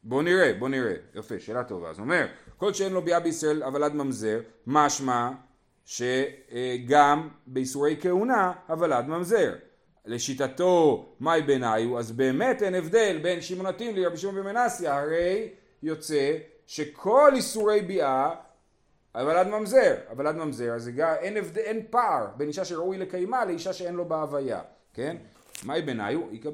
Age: 40-59